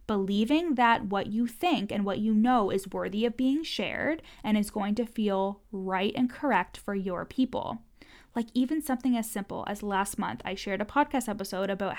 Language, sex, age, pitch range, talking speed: English, female, 10-29, 200-245 Hz, 195 wpm